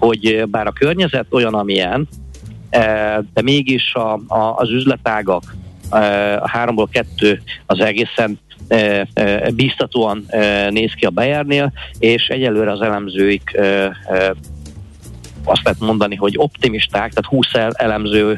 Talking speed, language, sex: 105 wpm, Hungarian, male